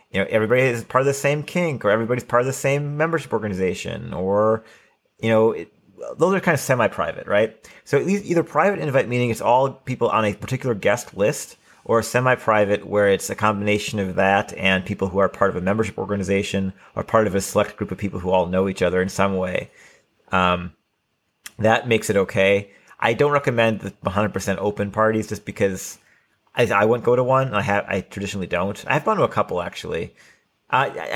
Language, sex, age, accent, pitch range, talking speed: English, male, 30-49, American, 100-130 Hz, 205 wpm